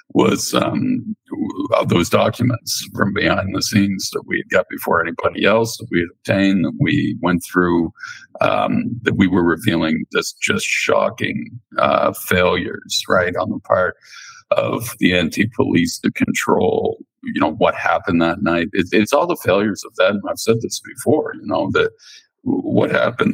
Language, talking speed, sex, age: English, 160 wpm, male, 50-69